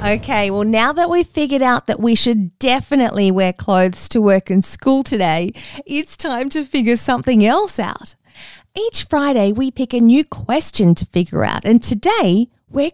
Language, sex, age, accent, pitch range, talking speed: English, female, 20-39, Australian, 185-275 Hz, 175 wpm